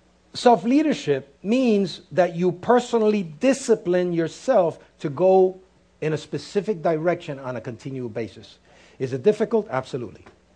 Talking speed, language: 120 wpm, English